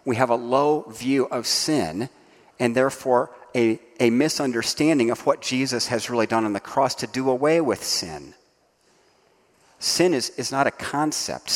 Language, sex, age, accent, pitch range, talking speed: English, male, 40-59, American, 125-165 Hz, 165 wpm